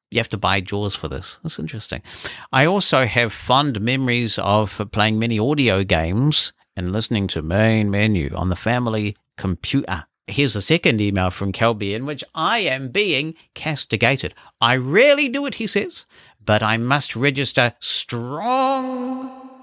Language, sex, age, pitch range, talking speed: English, male, 50-69, 100-130 Hz, 155 wpm